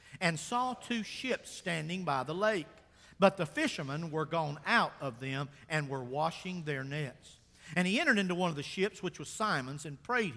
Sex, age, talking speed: male, 50-69, 195 wpm